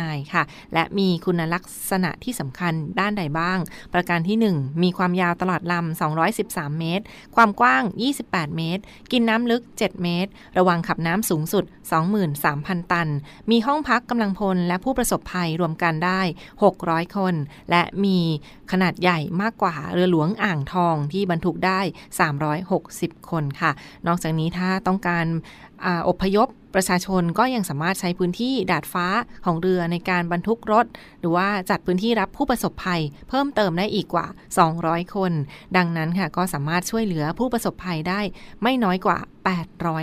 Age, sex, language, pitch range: 20-39, female, Thai, 170-200 Hz